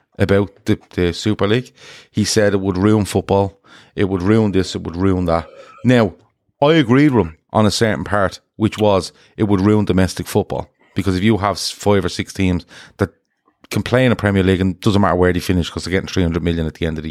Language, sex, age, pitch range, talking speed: English, male, 30-49, 90-110 Hz, 235 wpm